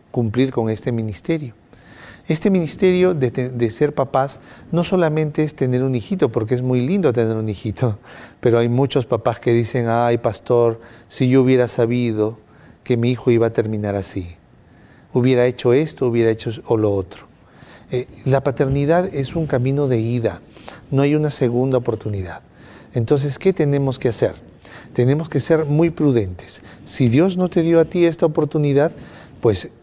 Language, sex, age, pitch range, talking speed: English, male, 40-59, 115-145 Hz, 170 wpm